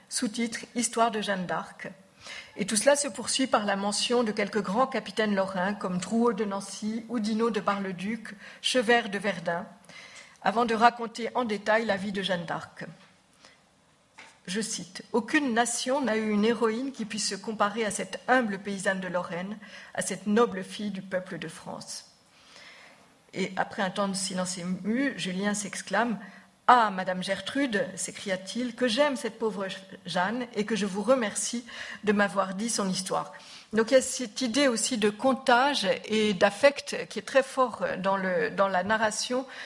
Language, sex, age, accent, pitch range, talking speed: French, female, 50-69, French, 195-235 Hz, 180 wpm